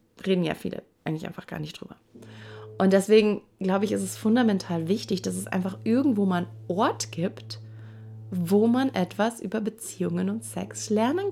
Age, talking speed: 30-49, 165 wpm